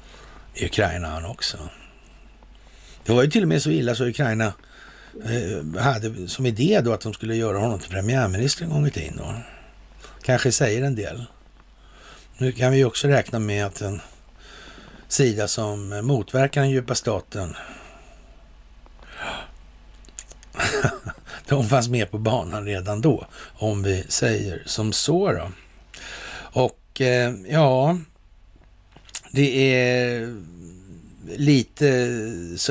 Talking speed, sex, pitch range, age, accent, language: 125 wpm, male, 95-125 Hz, 60-79, native, Swedish